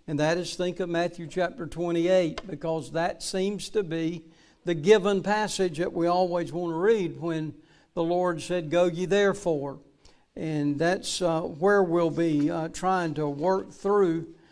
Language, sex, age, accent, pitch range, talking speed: English, male, 60-79, American, 160-190 Hz, 165 wpm